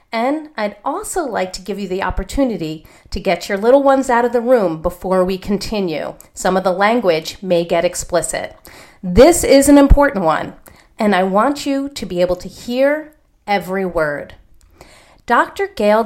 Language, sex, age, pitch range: English, female, 40-59, 180-265 Hz